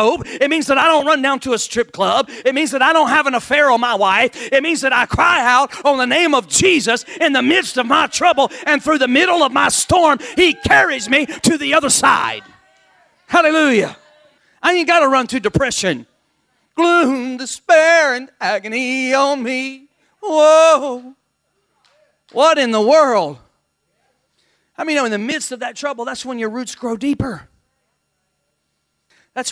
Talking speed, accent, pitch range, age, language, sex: 175 wpm, American, 225-280 Hz, 40-59, English, male